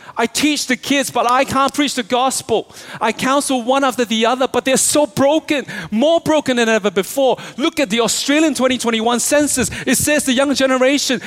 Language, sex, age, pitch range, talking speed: English, male, 30-49, 220-275 Hz, 190 wpm